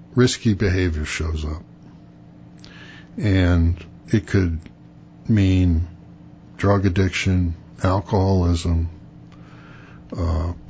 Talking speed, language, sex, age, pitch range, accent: 65 wpm, English, male, 60-79, 85-105 Hz, American